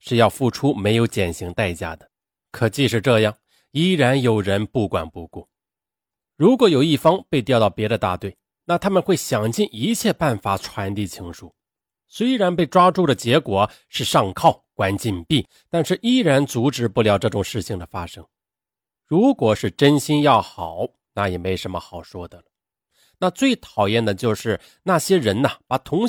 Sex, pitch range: male, 100-165 Hz